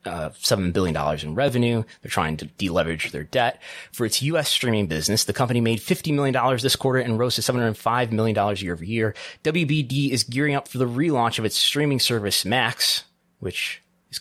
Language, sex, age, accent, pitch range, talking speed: English, male, 20-39, American, 90-130 Hz, 195 wpm